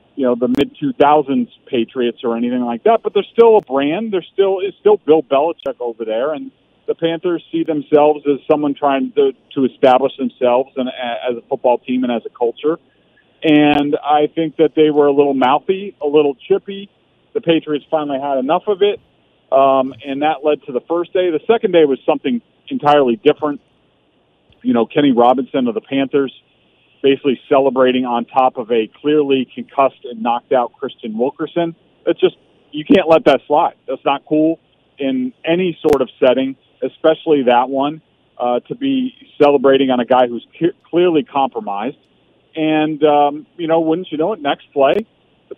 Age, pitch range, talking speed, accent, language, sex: 40-59, 135-170 Hz, 180 wpm, American, English, male